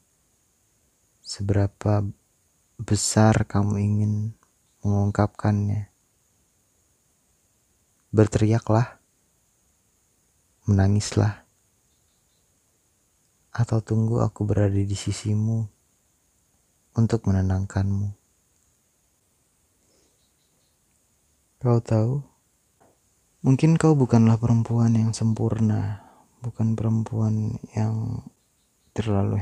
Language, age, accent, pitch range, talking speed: Indonesian, 30-49, native, 100-110 Hz, 55 wpm